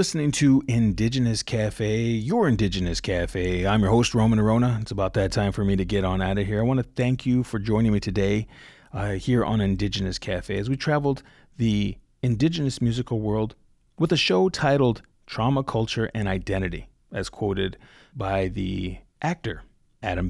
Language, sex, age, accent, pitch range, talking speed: English, male, 40-59, American, 100-130 Hz, 175 wpm